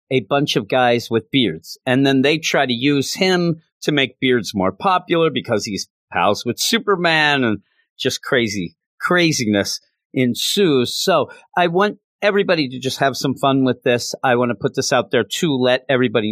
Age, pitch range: 40-59, 110-140 Hz